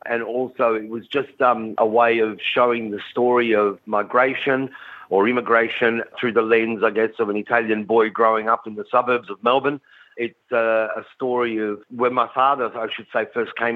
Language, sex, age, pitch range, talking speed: Italian, male, 50-69, 105-120 Hz, 195 wpm